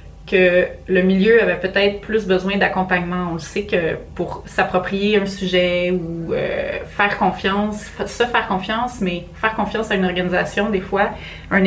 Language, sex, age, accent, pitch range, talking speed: French, female, 30-49, Canadian, 180-210 Hz, 165 wpm